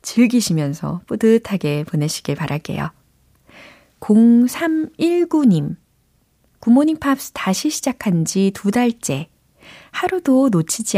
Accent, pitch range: native, 165-230 Hz